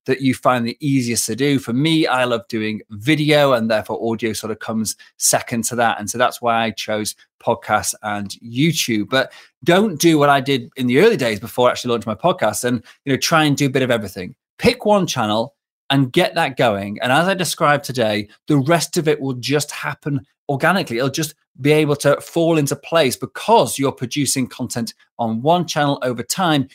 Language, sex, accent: English, male, British